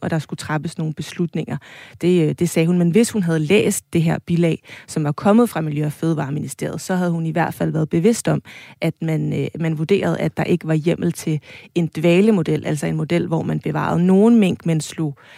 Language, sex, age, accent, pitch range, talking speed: Danish, female, 30-49, native, 160-190 Hz, 220 wpm